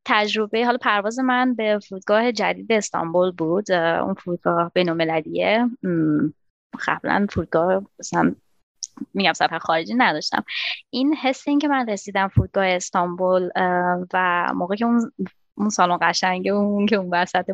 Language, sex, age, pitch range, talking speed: Persian, female, 20-39, 185-255 Hz, 135 wpm